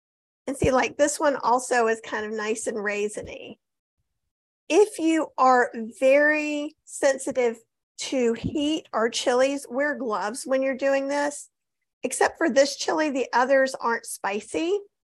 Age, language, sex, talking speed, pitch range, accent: 40-59, English, female, 140 wpm, 245-310 Hz, American